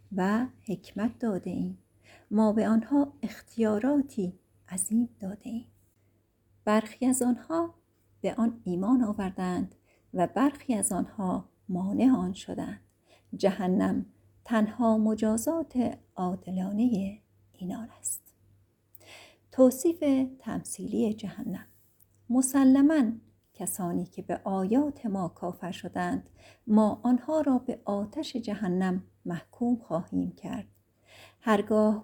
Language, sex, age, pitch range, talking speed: Persian, female, 50-69, 175-240 Hz, 95 wpm